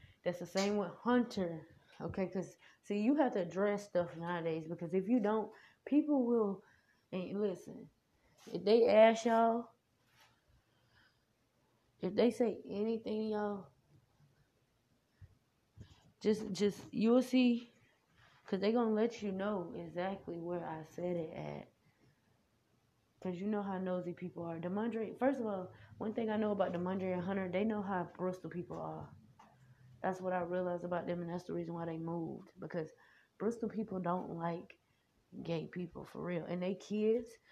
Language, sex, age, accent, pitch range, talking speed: English, female, 20-39, American, 165-205 Hz, 155 wpm